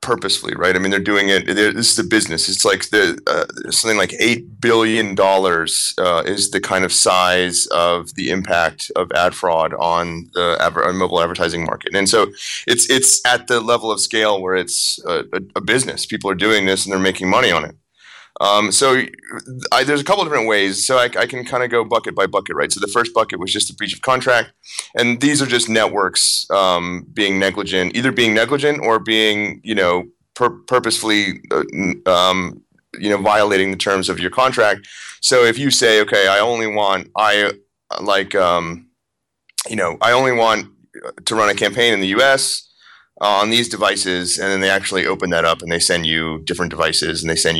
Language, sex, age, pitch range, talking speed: English, male, 30-49, 95-115 Hz, 210 wpm